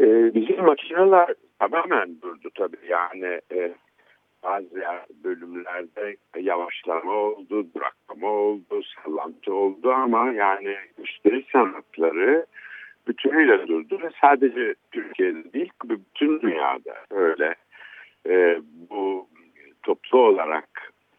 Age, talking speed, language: 60-79, 95 wpm, Turkish